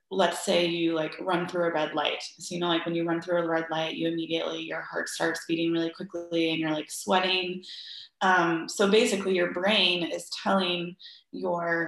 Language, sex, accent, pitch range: English, female, American, 170-195 Hz